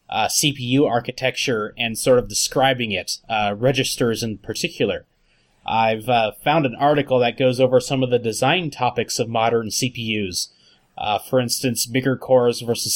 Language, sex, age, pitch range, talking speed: English, male, 20-39, 110-125 Hz, 155 wpm